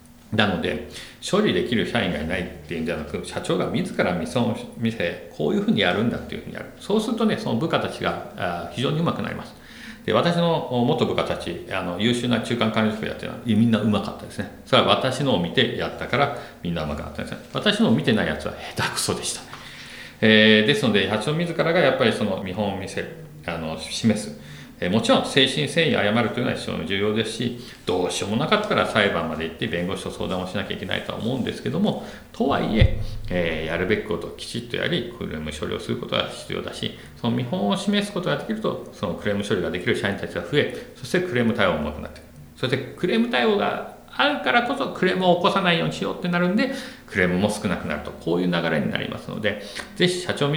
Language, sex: Japanese, male